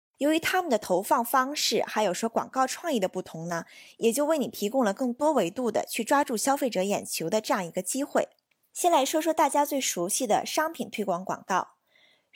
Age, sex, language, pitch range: 20-39, female, Chinese, 200-290 Hz